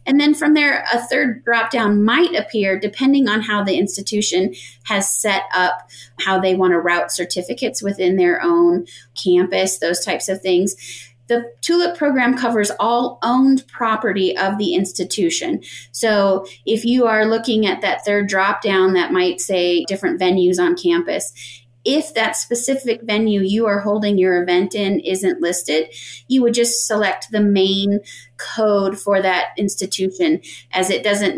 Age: 30-49